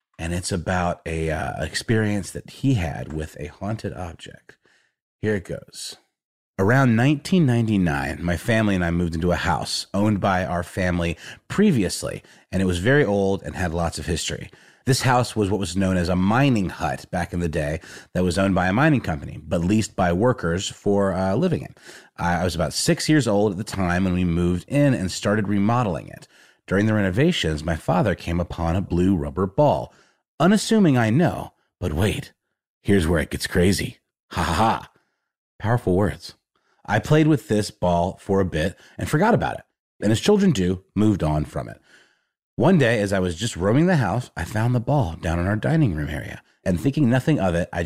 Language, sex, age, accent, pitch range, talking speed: English, male, 30-49, American, 85-120 Hz, 200 wpm